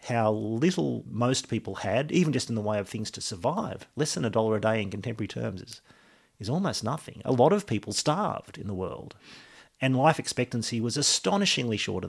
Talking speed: 205 wpm